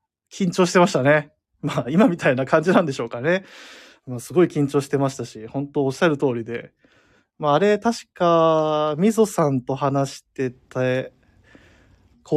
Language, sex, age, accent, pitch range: Japanese, male, 20-39, native, 120-180 Hz